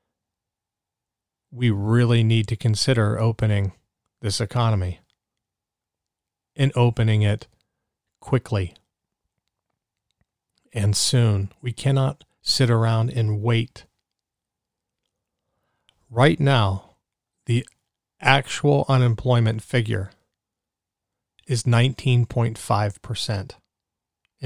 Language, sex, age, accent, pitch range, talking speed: English, male, 40-59, American, 105-120 Hz, 70 wpm